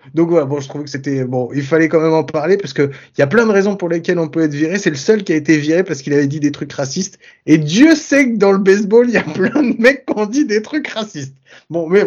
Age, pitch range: 30-49, 145-200 Hz